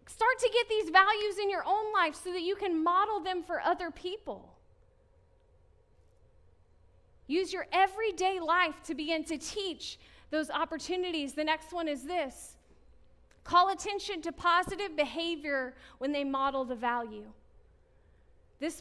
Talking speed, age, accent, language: 140 wpm, 30-49, American, English